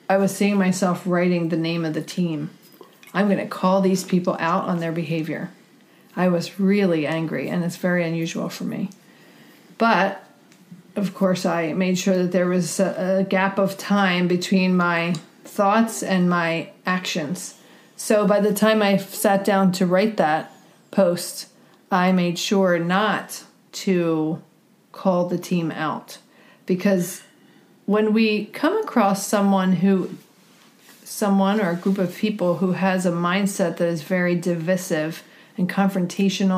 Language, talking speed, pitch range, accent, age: English, 150 wpm, 175-200 Hz, American, 40-59